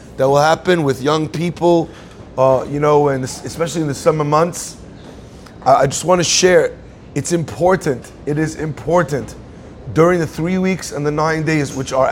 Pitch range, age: 145-175 Hz, 30-49